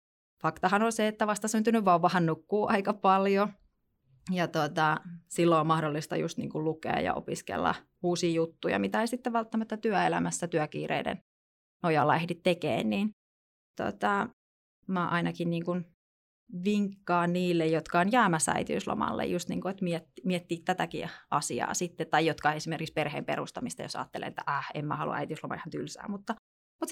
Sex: female